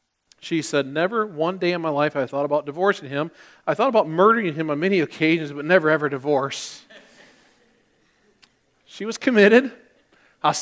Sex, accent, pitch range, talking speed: male, American, 150-240 Hz, 170 wpm